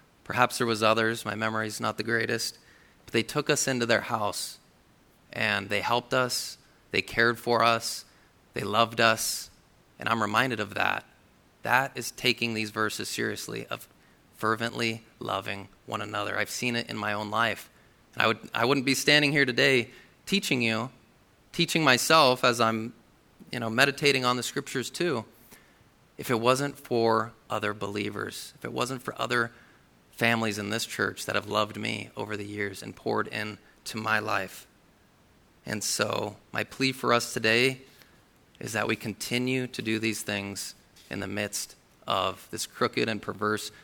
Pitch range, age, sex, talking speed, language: 105-125 Hz, 30-49, male, 170 wpm, English